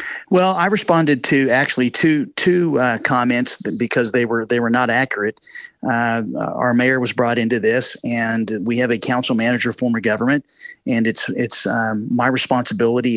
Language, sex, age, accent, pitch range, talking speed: English, male, 40-59, American, 115-135 Hz, 170 wpm